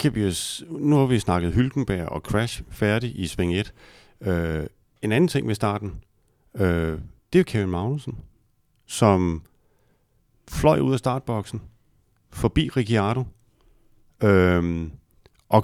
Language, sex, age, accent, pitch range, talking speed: Danish, male, 40-59, native, 95-120 Hz, 120 wpm